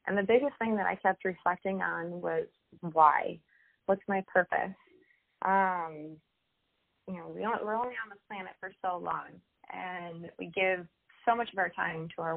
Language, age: English, 30-49